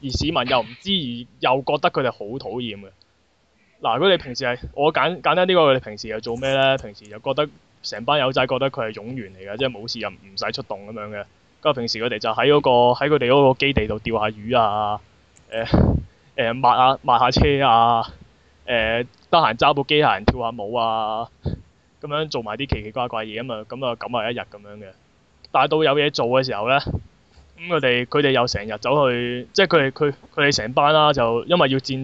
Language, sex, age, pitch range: Chinese, male, 20-39, 115-145 Hz